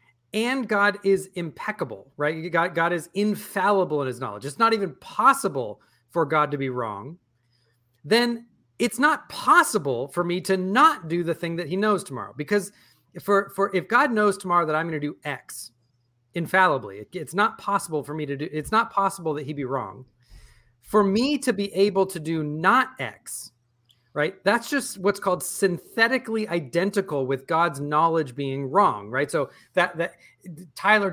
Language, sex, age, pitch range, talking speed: English, male, 30-49, 145-205 Hz, 170 wpm